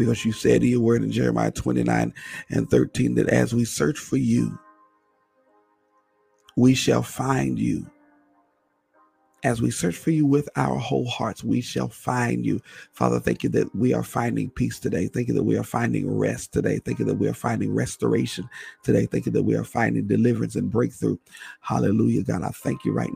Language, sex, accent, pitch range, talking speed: English, male, American, 95-115 Hz, 190 wpm